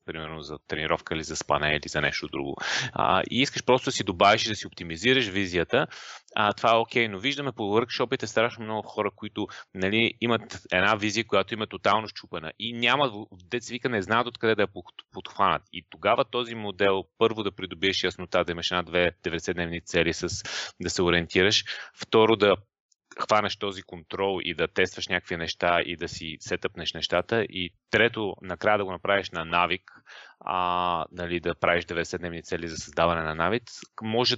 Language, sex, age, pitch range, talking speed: Bulgarian, male, 30-49, 90-115 Hz, 180 wpm